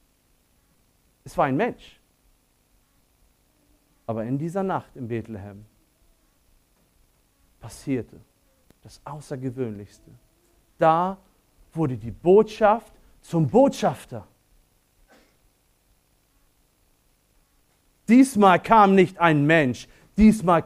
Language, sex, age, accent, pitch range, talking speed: German, male, 40-59, German, 115-185 Hz, 75 wpm